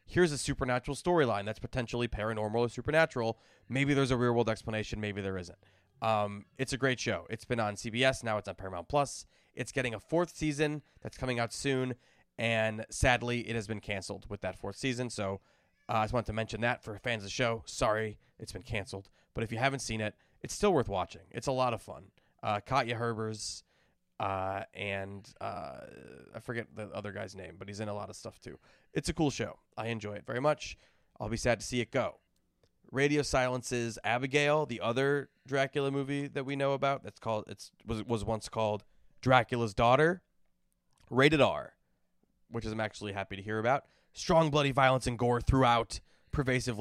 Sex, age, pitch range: male, 20-39, 105-130 Hz